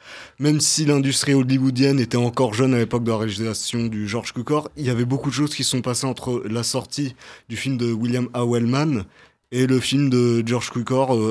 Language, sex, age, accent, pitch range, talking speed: French, male, 20-39, French, 115-130 Hz, 205 wpm